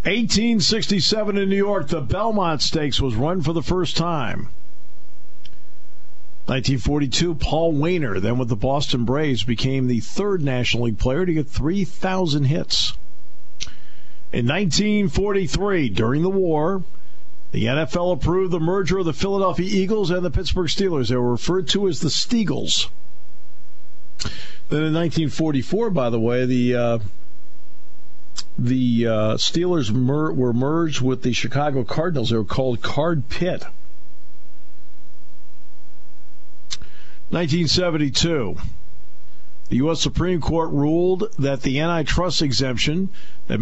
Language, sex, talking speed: English, male, 125 wpm